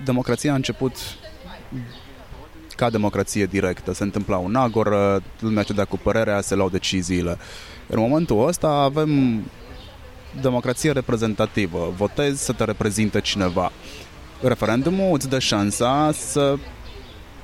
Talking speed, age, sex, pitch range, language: 115 wpm, 20-39, male, 95-125 Hz, Romanian